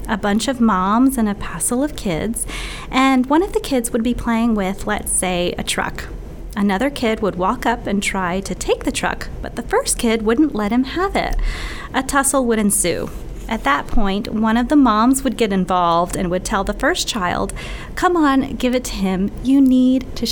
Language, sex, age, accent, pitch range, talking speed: English, female, 30-49, American, 210-275 Hz, 210 wpm